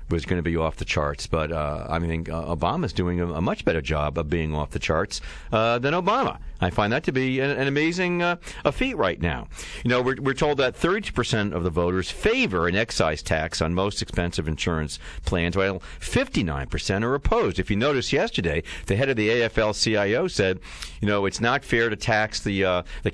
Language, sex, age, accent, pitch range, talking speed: English, male, 50-69, American, 80-105 Hz, 220 wpm